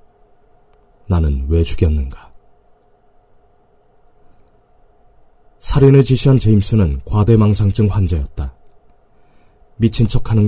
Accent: native